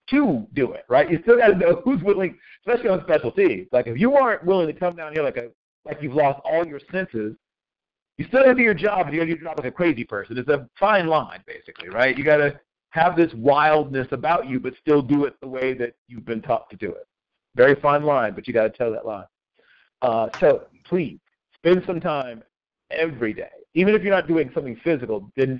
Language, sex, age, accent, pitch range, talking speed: English, male, 50-69, American, 130-190 Hz, 230 wpm